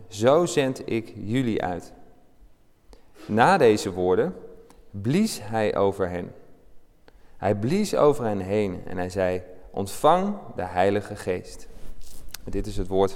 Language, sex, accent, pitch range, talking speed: Dutch, male, Dutch, 95-115 Hz, 130 wpm